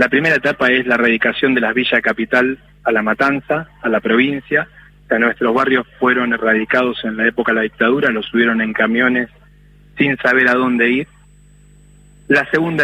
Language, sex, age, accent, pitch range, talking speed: Spanish, male, 20-39, Argentinian, 120-150 Hz, 175 wpm